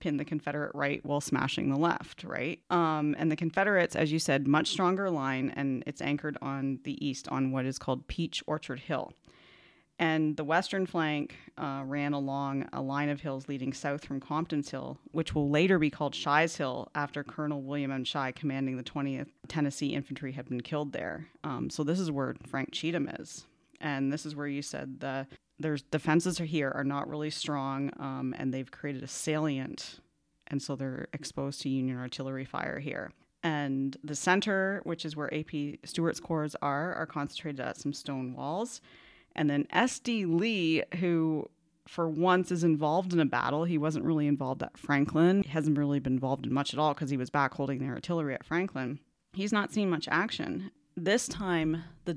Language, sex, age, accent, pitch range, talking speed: English, female, 30-49, American, 140-165 Hz, 190 wpm